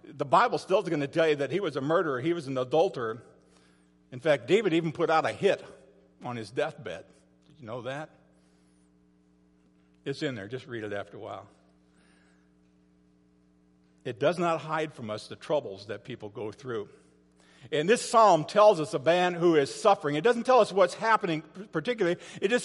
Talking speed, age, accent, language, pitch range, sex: 190 wpm, 50-69, American, English, 135-200 Hz, male